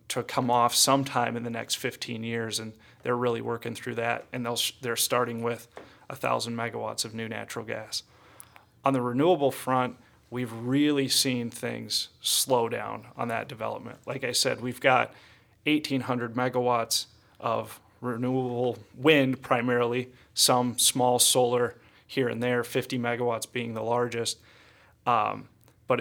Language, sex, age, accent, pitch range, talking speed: English, male, 30-49, American, 115-125 Hz, 150 wpm